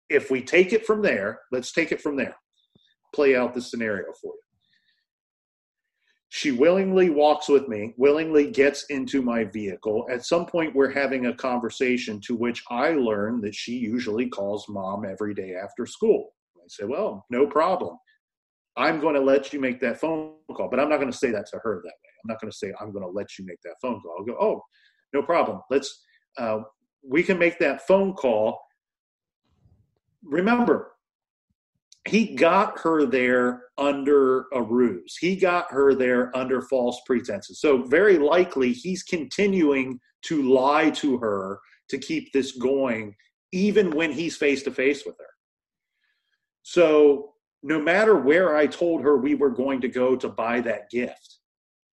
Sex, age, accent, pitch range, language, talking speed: male, 40-59, American, 125-190 Hz, English, 175 wpm